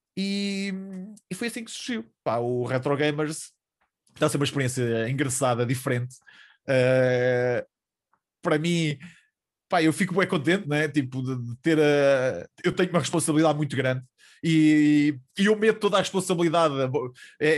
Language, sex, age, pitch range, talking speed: English, male, 20-39, 135-185 Hz, 155 wpm